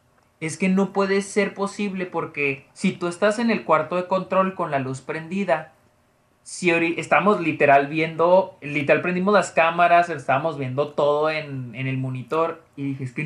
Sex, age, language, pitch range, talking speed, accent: male, 30-49, Spanish, 135-185 Hz, 175 wpm, Mexican